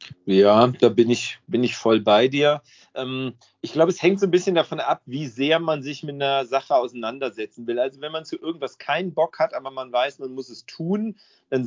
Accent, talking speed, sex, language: German, 220 wpm, male, German